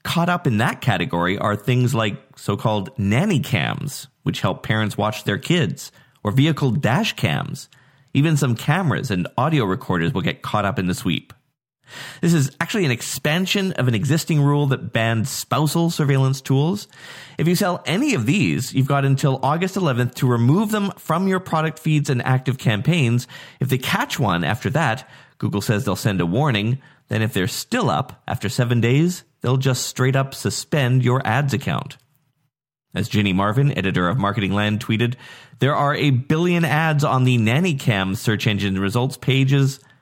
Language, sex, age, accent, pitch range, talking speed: English, male, 30-49, American, 110-145 Hz, 175 wpm